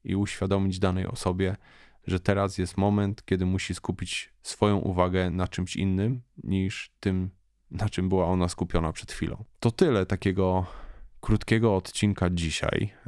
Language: Polish